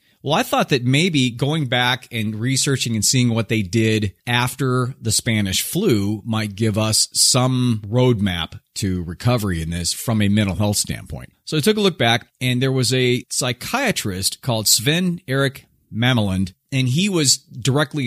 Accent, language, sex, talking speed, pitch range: American, English, male, 170 wpm, 105-135 Hz